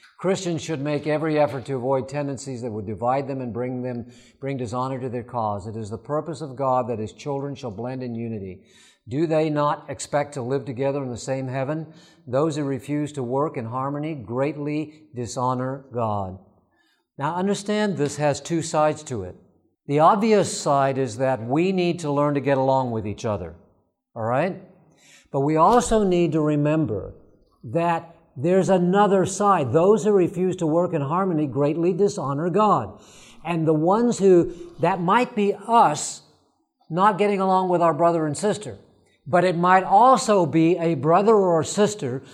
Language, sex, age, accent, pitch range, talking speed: English, male, 50-69, American, 135-195 Hz, 175 wpm